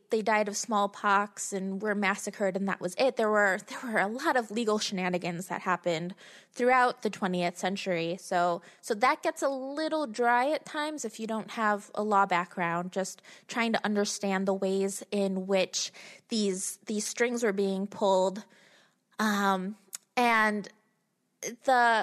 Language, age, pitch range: English, 20-39, 195-230 Hz